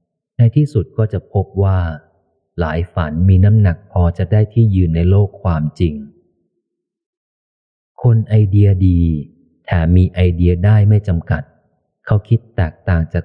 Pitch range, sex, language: 85-105 Hz, male, Thai